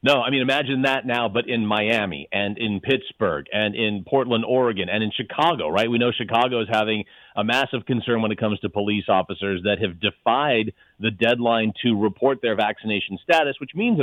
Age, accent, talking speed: 40-59, American, 195 wpm